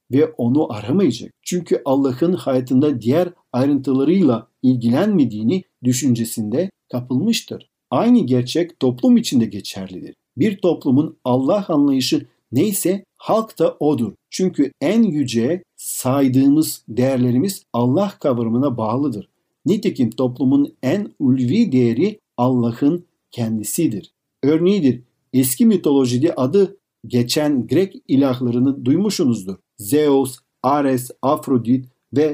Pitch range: 125-180 Hz